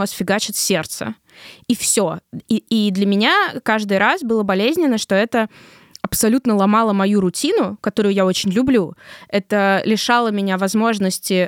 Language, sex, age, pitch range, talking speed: Russian, female, 20-39, 180-230 Hz, 130 wpm